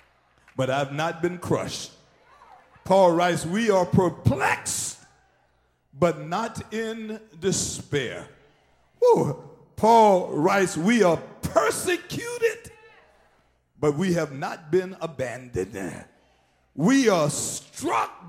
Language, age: English, 50-69